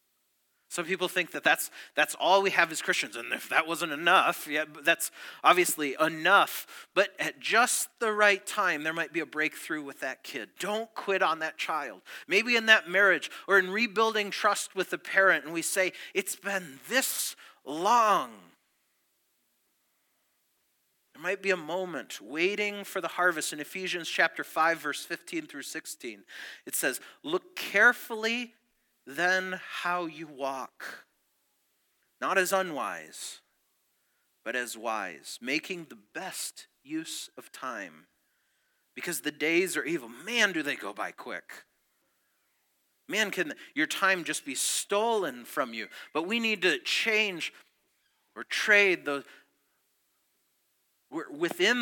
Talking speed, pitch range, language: 145 wpm, 165-225 Hz, English